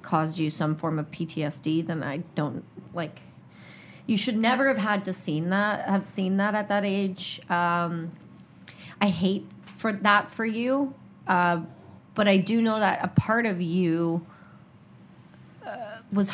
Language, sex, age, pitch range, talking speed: English, female, 30-49, 170-200 Hz, 155 wpm